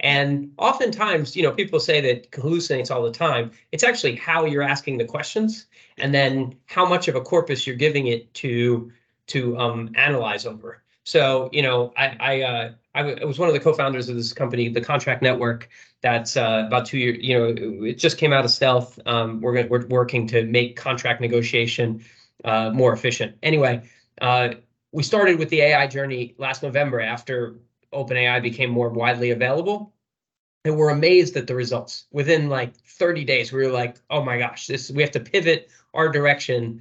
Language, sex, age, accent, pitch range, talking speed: English, male, 30-49, American, 120-145 Hz, 185 wpm